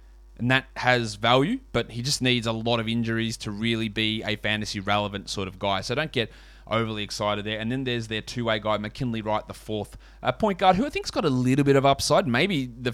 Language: English